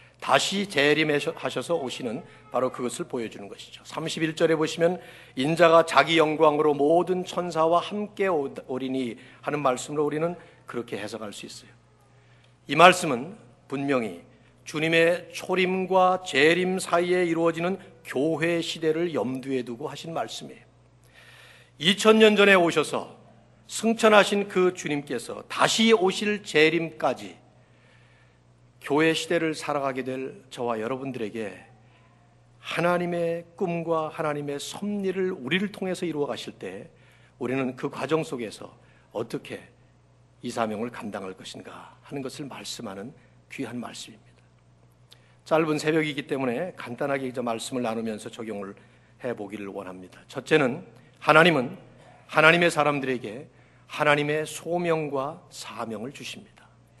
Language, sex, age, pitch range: Korean, male, 50-69, 120-170 Hz